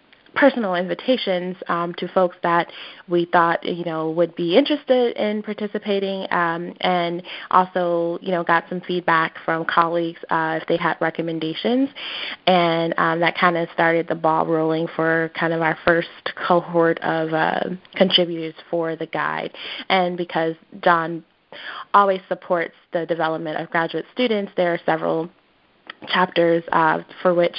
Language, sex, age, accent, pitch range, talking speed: English, female, 20-39, American, 165-185 Hz, 150 wpm